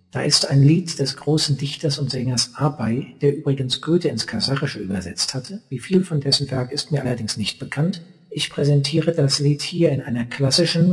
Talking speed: 190 wpm